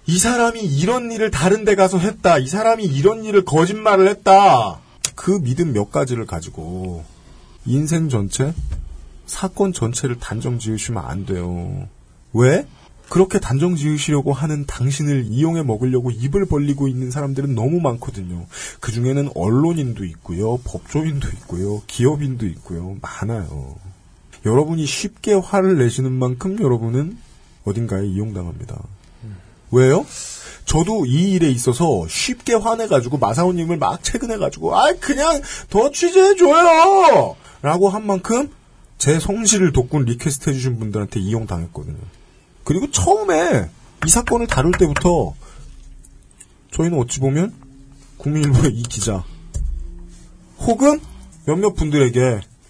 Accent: native